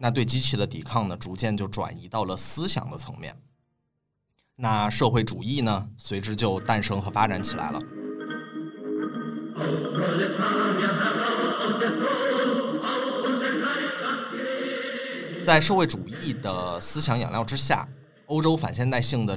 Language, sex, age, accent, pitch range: Chinese, male, 20-39, native, 100-145 Hz